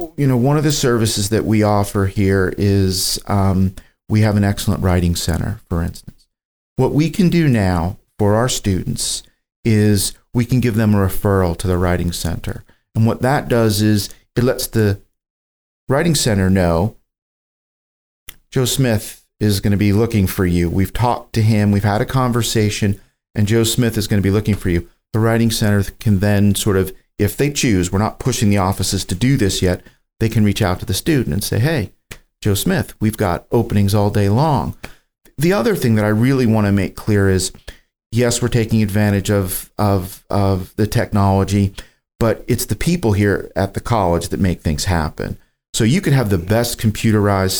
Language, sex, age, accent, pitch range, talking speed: English, male, 40-59, American, 95-115 Hz, 195 wpm